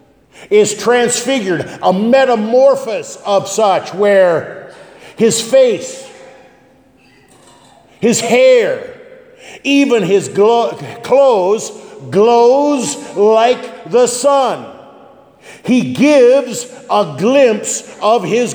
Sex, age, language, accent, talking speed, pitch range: male, 50-69, English, American, 80 wpm, 170-245 Hz